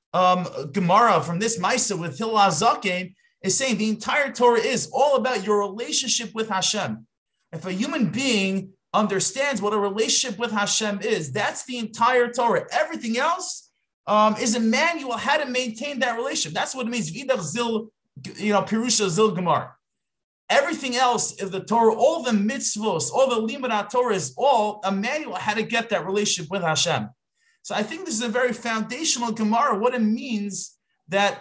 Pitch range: 185-240 Hz